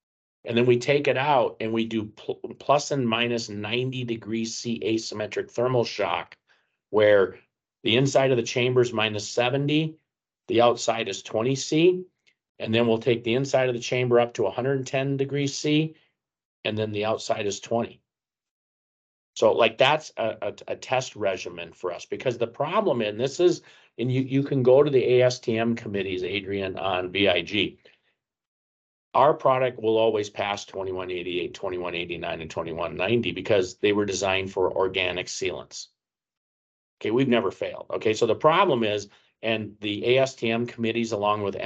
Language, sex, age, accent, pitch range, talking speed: English, male, 50-69, American, 105-125 Hz, 160 wpm